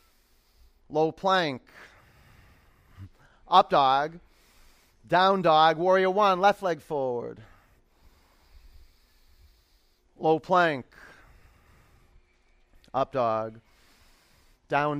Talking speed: 65 wpm